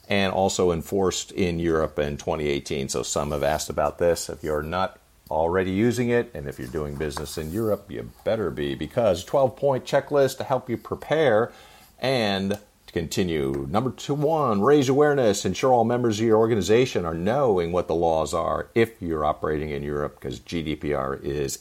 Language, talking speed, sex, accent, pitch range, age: English, 180 wpm, male, American, 80-115 Hz, 50-69